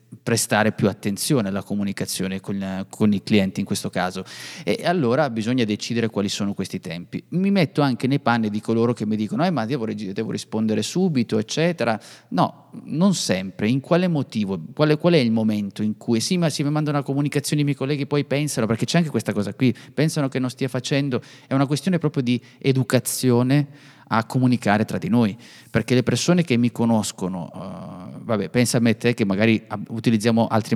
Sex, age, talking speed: male, 30-49, 195 wpm